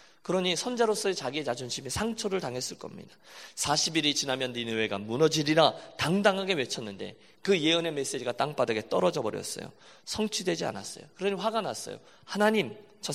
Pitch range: 120-180 Hz